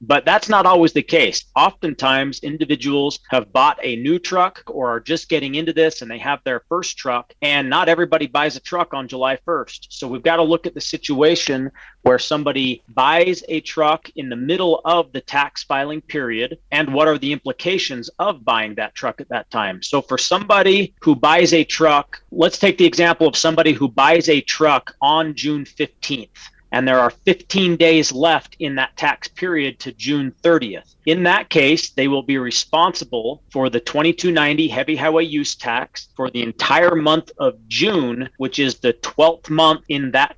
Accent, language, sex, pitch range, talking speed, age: American, English, male, 130-165 Hz, 190 wpm, 30-49